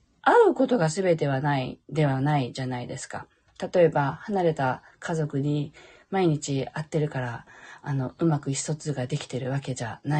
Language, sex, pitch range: Japanese, female, 145-215 Hz